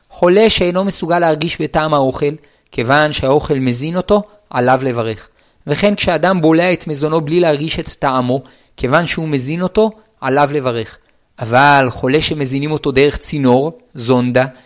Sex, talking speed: male, 140 wpm